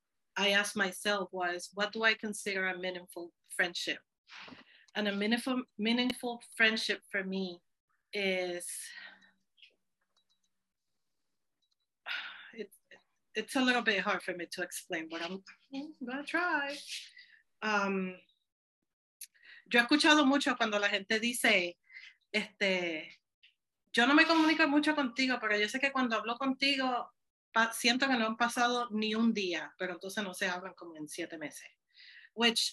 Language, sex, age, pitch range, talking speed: English, female, 40-59, 185-240 Hz, 105 wpm